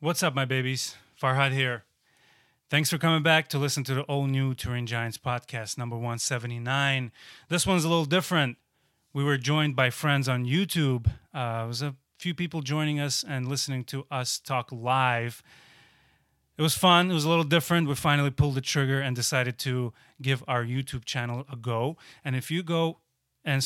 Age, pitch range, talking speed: 30-49, 125-150 Hz, 185 wpm